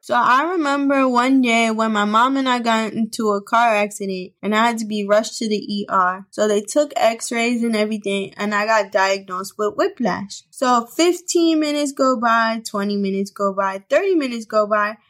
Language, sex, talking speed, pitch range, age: English, female, 195 wpm, 220-290 Hz, 10-29